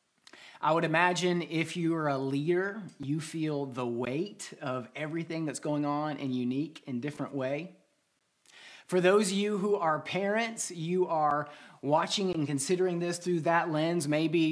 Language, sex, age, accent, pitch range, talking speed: English, male, 30-49, American, 145-175 Hz, 160 wpm